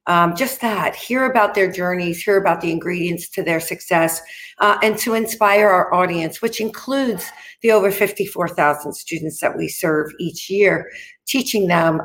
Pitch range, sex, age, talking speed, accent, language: 160-205 Hz, female, 50-69, 165 wpm, American, English